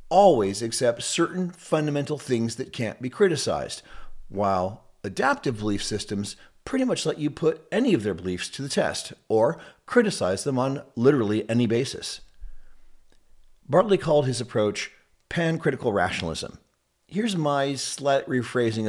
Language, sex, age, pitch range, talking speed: English, male, 40-59, 105-145 Hz, 135 wpm